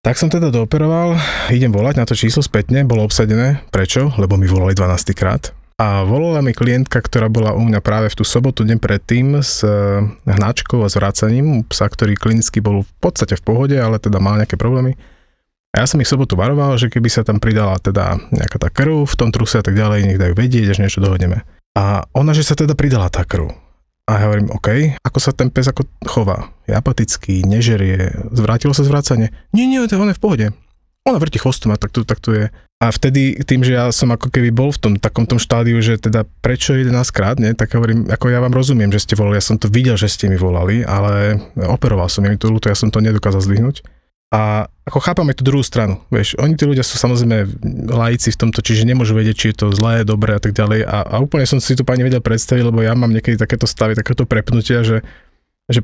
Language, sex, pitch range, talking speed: Slovak, male, 105-130 Hz, 225 wpm